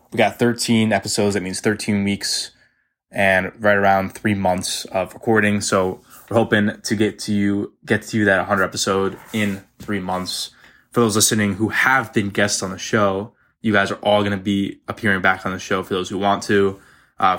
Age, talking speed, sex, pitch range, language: 20-39, 200 wpm, male, 95-110 Hz, English